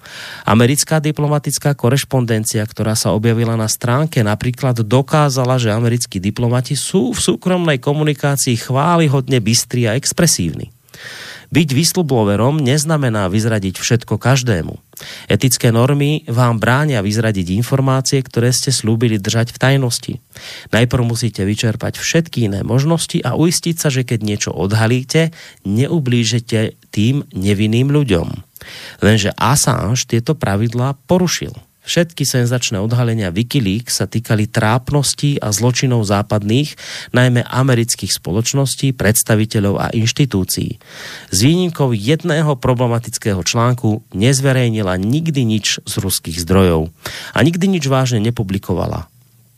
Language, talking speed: Slovak, 115 wpm